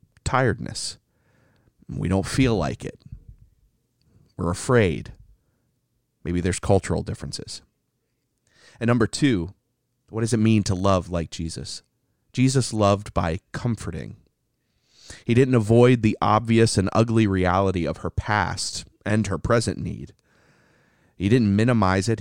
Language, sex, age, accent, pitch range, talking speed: English, male, 30-49, American, 90-120 Hz, 125 wpm